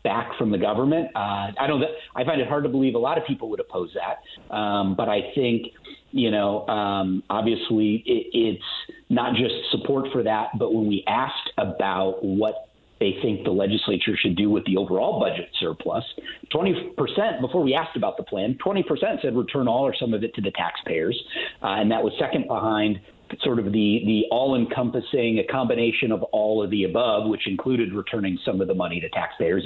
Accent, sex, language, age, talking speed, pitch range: American, male, English, 40-59, 200 wpm, 100-125 Hz